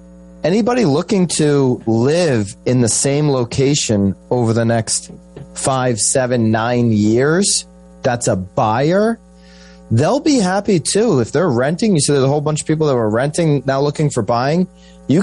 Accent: American